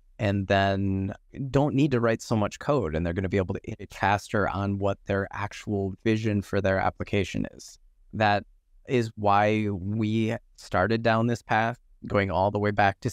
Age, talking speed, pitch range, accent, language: 20-39, 180 wpm, 95-110 Hz, American, English